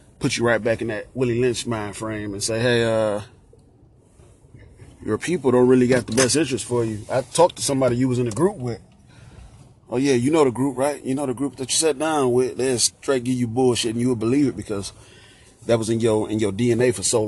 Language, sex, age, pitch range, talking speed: English, male, 30-49, 105-125 Hz, 245 wpm